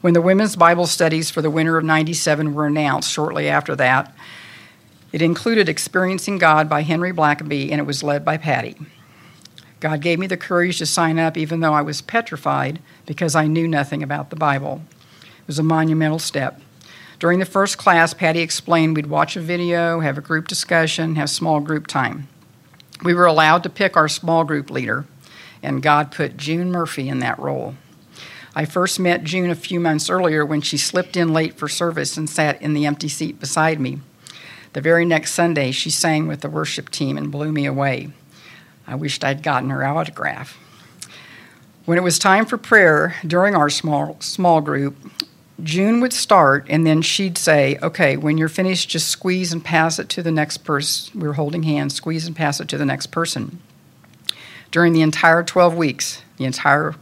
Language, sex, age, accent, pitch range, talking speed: English, female, 60-79, American, 150-170 Hz, 190 wpm